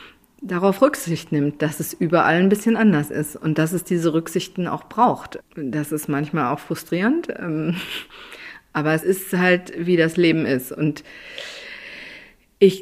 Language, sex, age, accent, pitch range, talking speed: German, female, 40-59, German, 145-175 Hz, 155 wpm